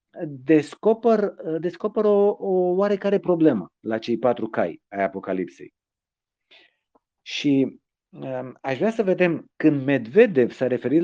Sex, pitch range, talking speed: male, 115-170 Hz, 110 wpm